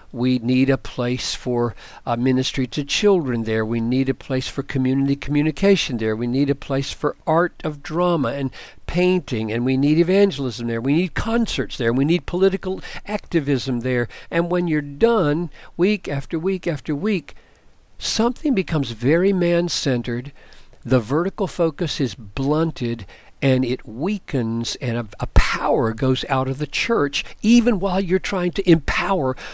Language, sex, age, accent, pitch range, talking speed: English, male, 60-79, American, 125-170 Hz, 160 wpm